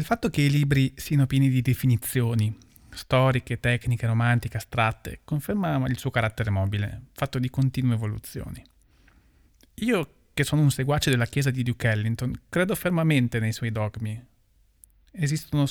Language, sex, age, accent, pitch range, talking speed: Italian, male, 30-49, native, 110-140 Hz, 145 wpm